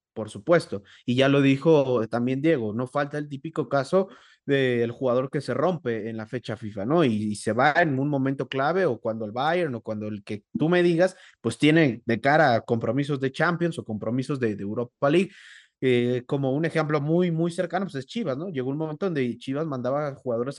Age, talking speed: 30-49, 220 wpm